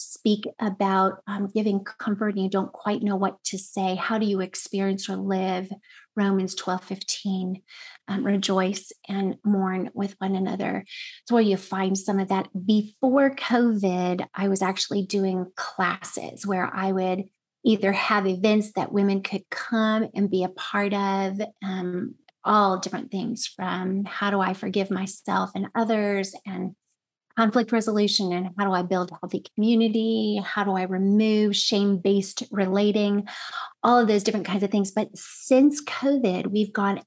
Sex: female